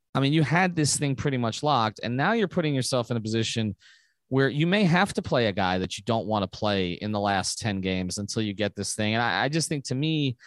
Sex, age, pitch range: male, 30-49, 110-145 Hz